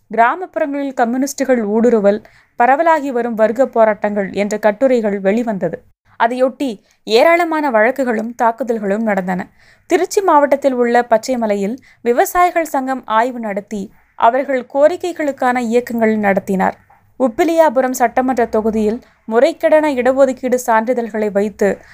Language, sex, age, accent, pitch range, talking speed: Tamil, female, 20-39, native, 220-270 Hz, 95 wpm